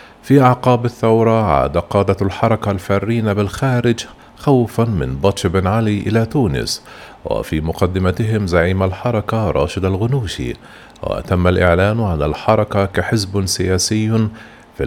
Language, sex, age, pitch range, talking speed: Arabic, male, 40-59, 95-115 Hz, 115 wpm